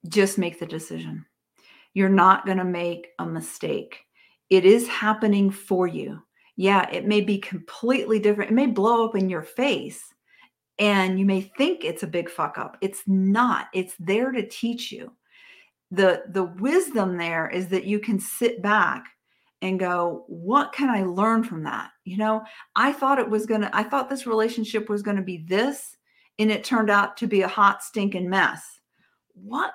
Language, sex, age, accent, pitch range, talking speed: English, female, 40-59, American, 195-255 Hz, 185 wpm